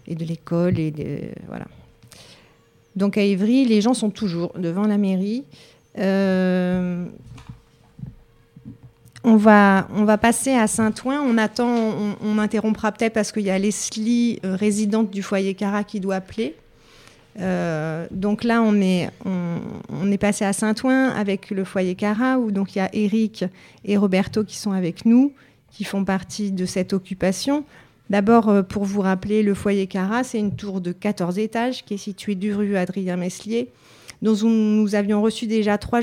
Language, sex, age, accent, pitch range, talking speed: French, female, 40-59, French, 180-220 Hz, 170 wpm